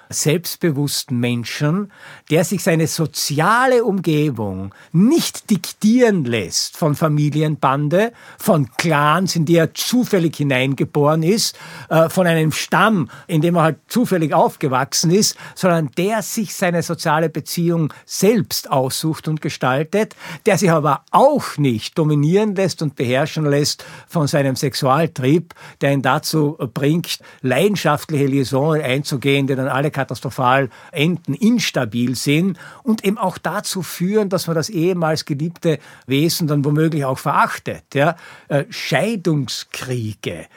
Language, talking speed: German, 125 wpm